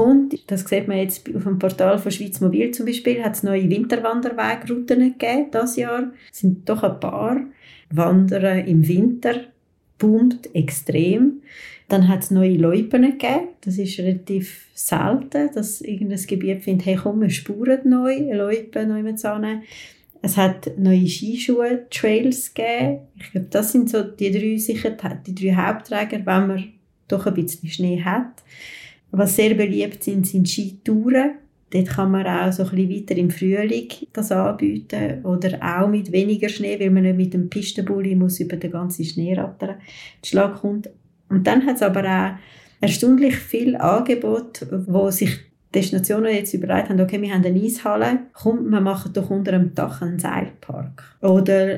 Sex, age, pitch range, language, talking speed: female, 30-49, 185-225 Hz, German, 160 wpm